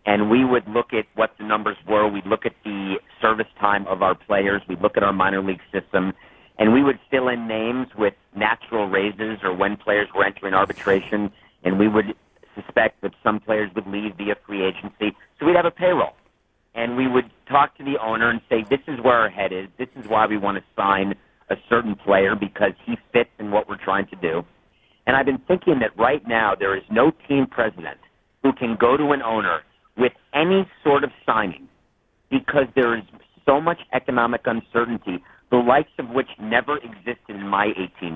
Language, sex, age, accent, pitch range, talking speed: English, male, 50-69, American, 100-135 Hz, 205 wpm